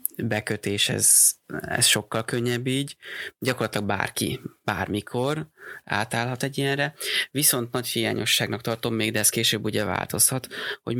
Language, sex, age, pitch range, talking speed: Hungarian, male, 20-39, 105-125 Hz, 125 wpm